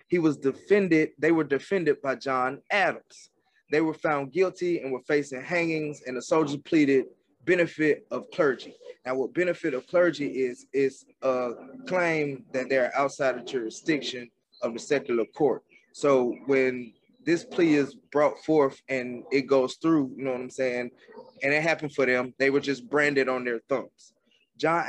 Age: 20-39